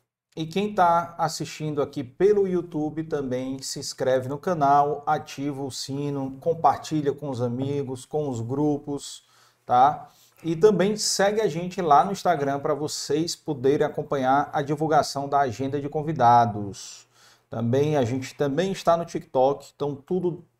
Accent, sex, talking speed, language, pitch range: Brazilian, male, 145 wpm, Portuguese, 135-165 Hz